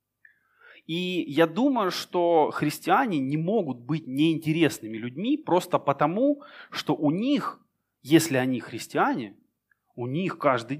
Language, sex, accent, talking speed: Russian, male, native, 115 wpm